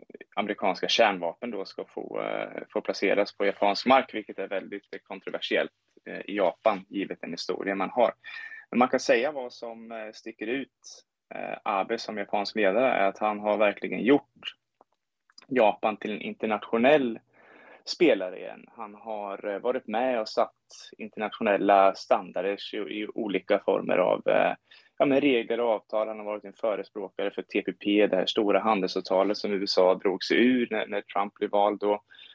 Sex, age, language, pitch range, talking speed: male, 20-39, Swedish, 100-110 Hz, 160 wpm